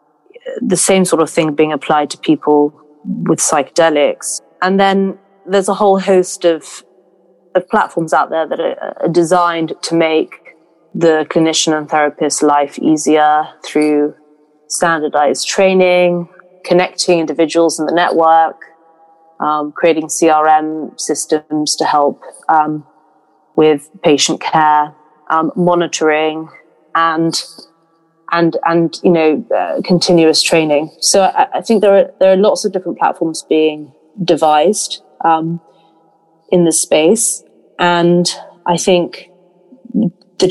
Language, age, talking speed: English, 30-49, 125 wpm